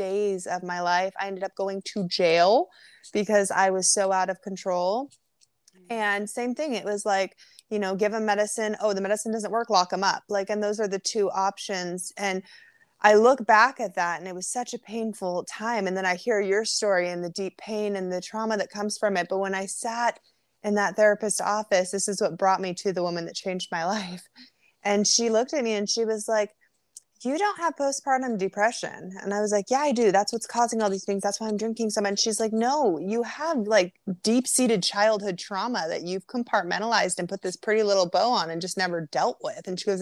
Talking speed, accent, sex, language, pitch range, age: 230 wpm, American, female, English, 185-220 Hz, 20-39